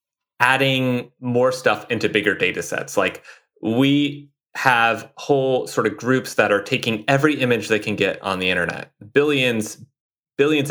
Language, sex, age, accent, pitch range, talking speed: English, male, 30-49, American, 100-135 Hz, 150 wpm